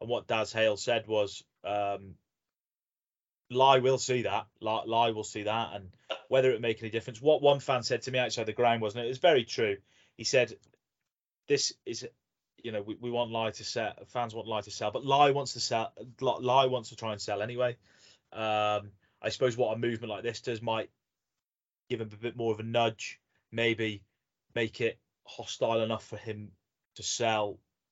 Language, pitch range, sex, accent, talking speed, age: English, 100-125 Hz, male, British, 200 wpm, 20-39